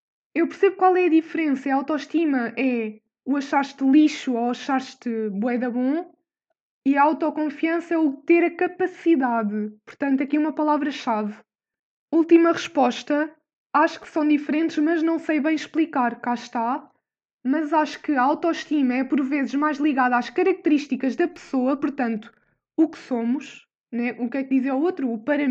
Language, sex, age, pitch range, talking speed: Portuguese, female, 20-39, 255-310 Hz, 165 wpm